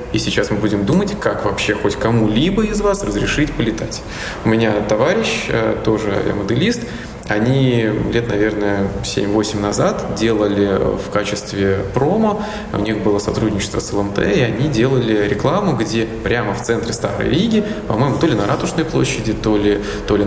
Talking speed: 155 wpm